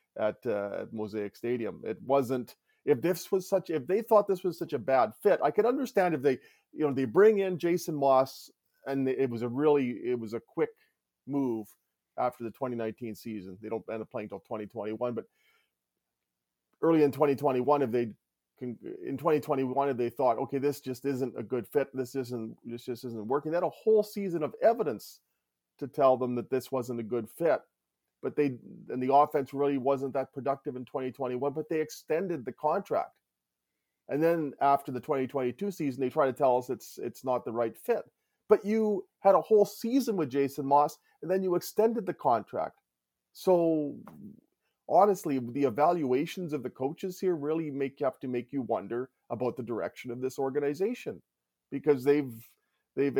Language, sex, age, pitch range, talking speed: English, male, 40-59, 125-160 Hz, 185 wpm